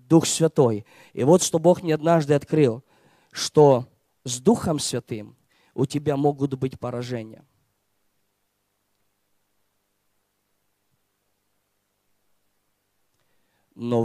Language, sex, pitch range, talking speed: Russian, male, 105-150 Hz, 80 wpm